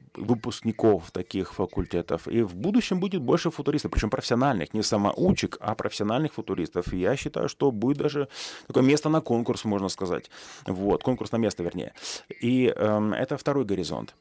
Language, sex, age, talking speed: Russian, male, 30-49, 155 wpm